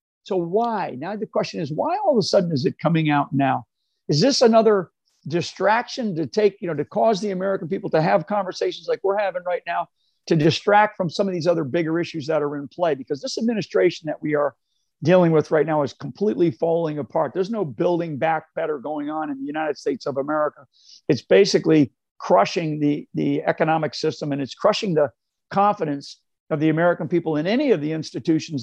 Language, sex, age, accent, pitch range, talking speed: English, male, 50-69, American, 150-195 Hz, 205 wpm